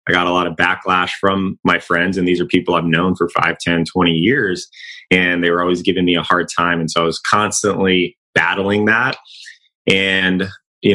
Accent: American